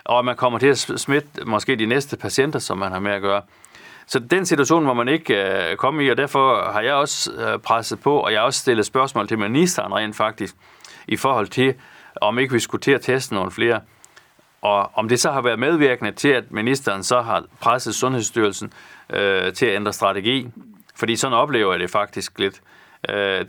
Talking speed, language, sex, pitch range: 205 wpm, Danish, male, 110-140 Hz